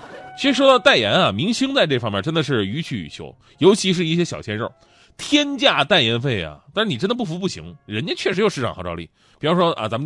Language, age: Chinese, 30-49